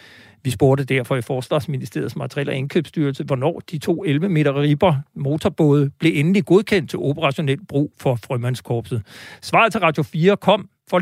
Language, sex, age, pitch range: Danish, male, 60-79, 130-175 Hz